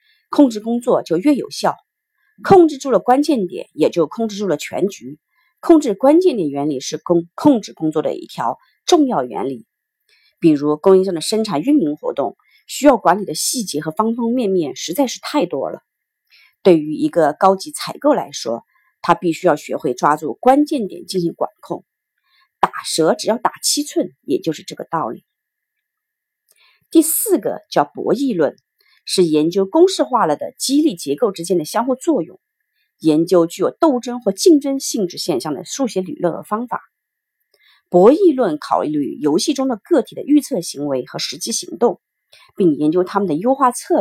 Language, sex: Chinese, female